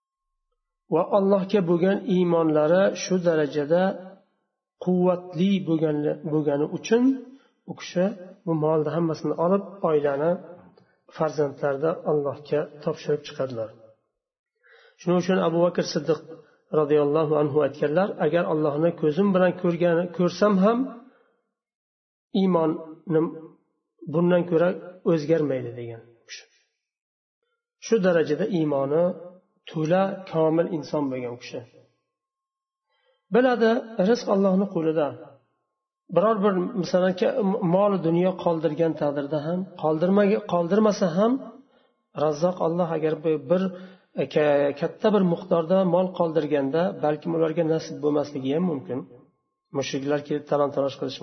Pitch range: 155-200 Hz